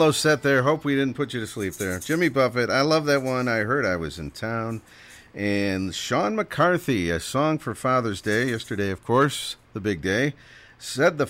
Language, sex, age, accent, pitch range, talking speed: English, male, 50-69, American, 100-140 Hz, 200 wpm